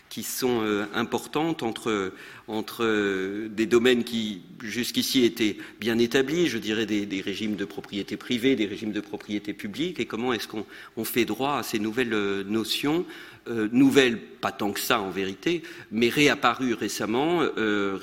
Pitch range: 105-125 Hz